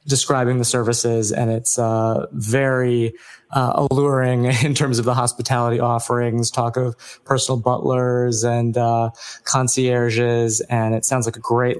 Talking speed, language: 140 wpm, English